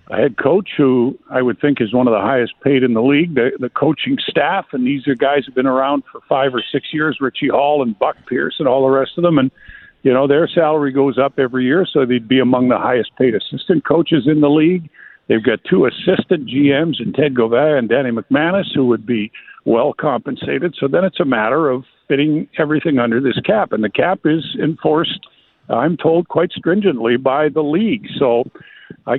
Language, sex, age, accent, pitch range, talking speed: English, male, 50-69, American, 135-175 Hz, 220 wpm